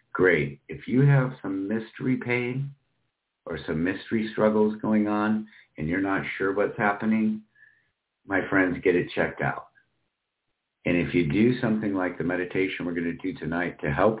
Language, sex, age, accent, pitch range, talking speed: English, male, 50-69, American, 80-105 Hz, 170 wpm